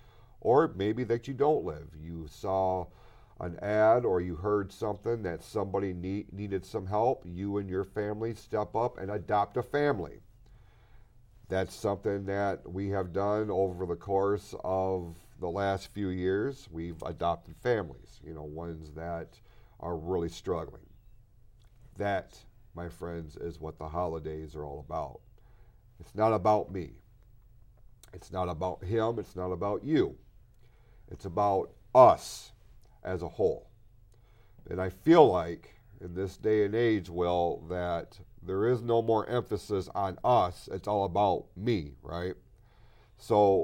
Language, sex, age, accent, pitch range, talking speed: English, male, 40-59, American, 95-115 Hz, 145 wpm